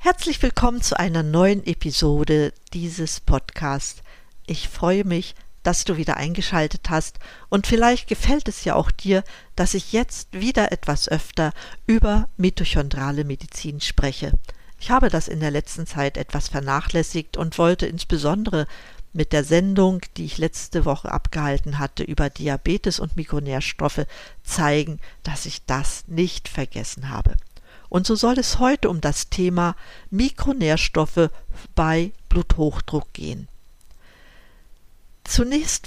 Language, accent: German, German